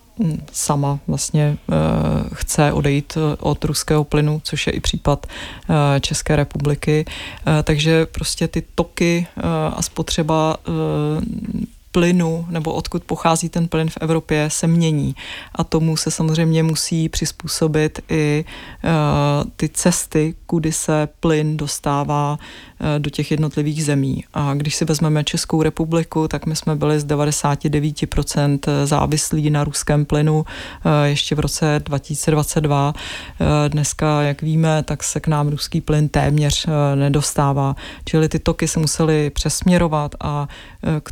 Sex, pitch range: female, 145-160 Hz